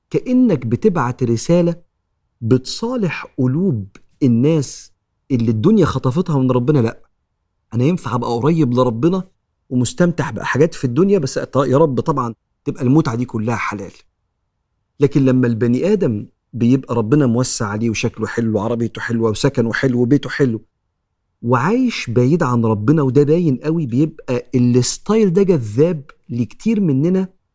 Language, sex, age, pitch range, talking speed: Arabic, male, 40-59, 115-155 Hz, 130 wpm